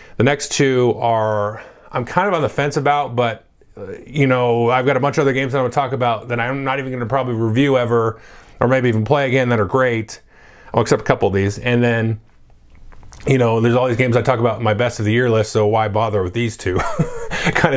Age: 30-49